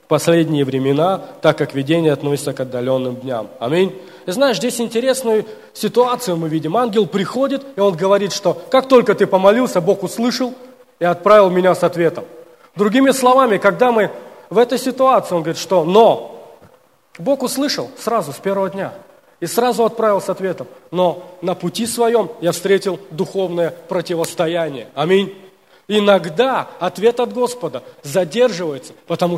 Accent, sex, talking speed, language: native, male, 145 wpm, Russian